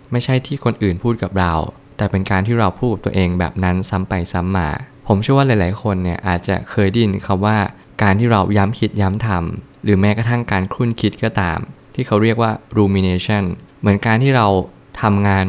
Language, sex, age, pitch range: Thai, male, 20-39, 95-115 Hz